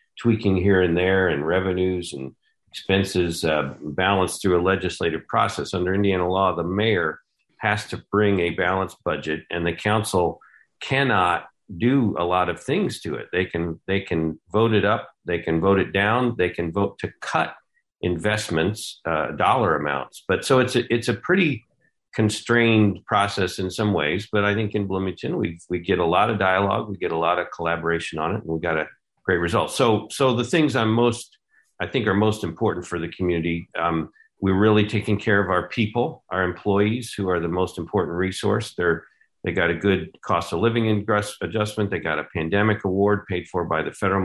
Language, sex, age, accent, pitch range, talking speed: English, male, 50-69, American, 90-110 Hz, 195 wpm